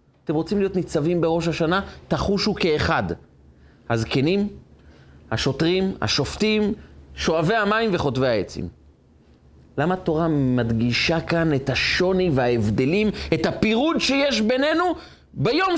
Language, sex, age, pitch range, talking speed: Hebrew, male, 30-49, 130-210 Hz, 105 wpm